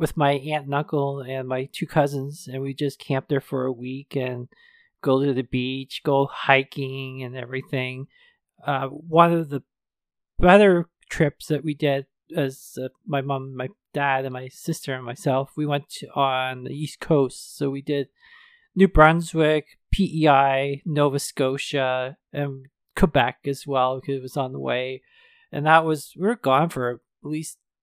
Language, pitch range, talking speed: English, 130-155 Hz, 170 wpm